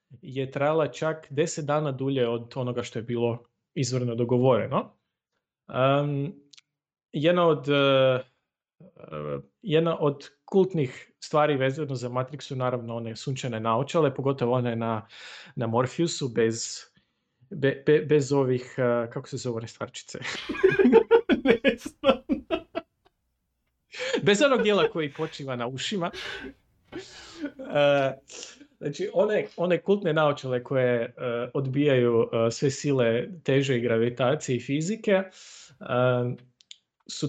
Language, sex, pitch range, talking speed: Croatian, male, 125-160 Hz, 110 wpm